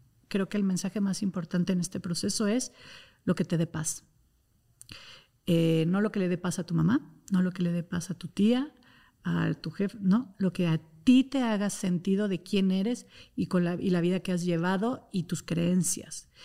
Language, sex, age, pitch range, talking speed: Spanish, female, 50-69, 175-215 Hz, 220 wpm